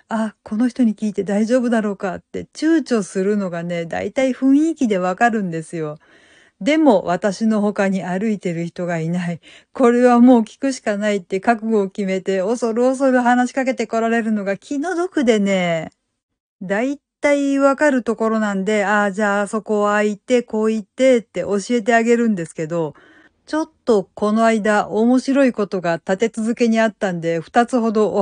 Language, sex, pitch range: Japanese, female, 190-240 Hz